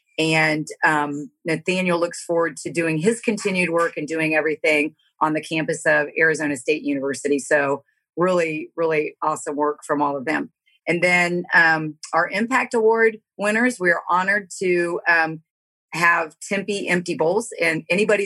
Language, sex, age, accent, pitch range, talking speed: English, female, 40-59, American, 155-190 Hz, 155 wpm